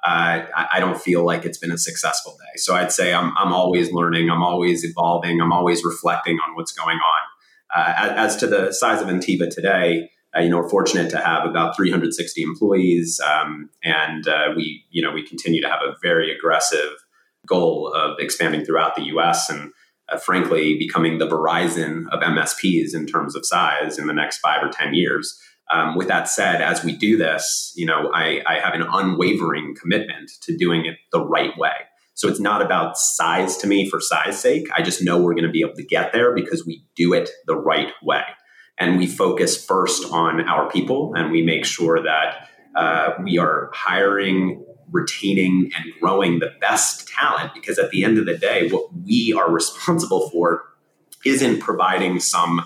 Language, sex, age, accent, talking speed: English, male, 30-49, American, 195 wpm